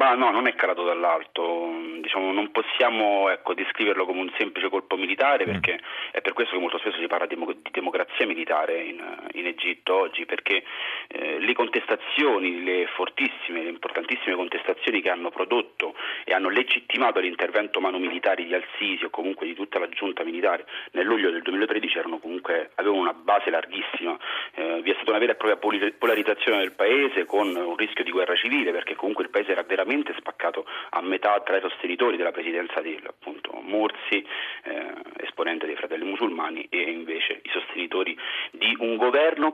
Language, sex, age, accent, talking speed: Italian, male, 30-49, native, 170 wpm